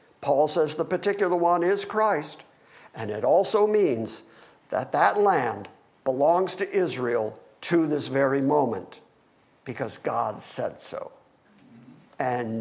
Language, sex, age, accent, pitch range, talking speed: English, male, 50-69, American, 155-230 Hz, 125 wpm